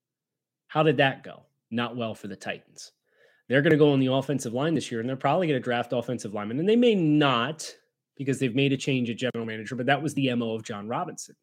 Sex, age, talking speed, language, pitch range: male, 30-49, 245 wpm, English, 120-150 Hz